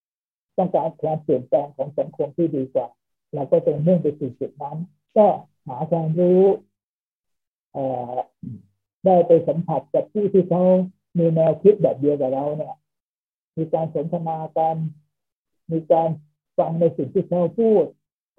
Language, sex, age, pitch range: Thai, male, 60-79, 145-175 Hz